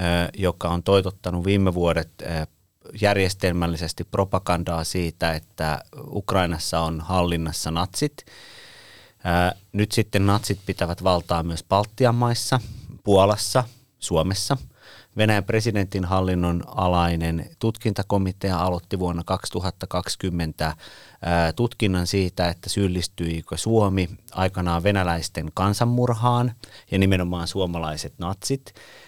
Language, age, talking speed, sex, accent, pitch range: Finnish, 30-49, 85 wpm, male, native, 90-105 Hz